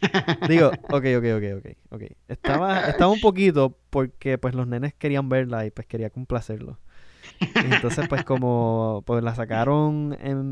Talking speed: 155 wpm